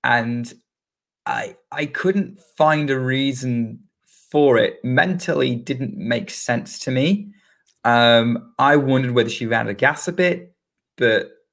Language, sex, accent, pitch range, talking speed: English, male, British, 105-130 Hz, 135 wpm